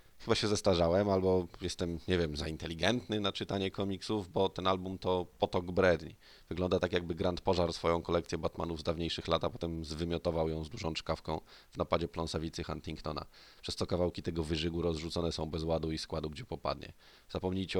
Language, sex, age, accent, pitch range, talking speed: Polish, male, 20-39, native, 80-90 Hz, 180 wpm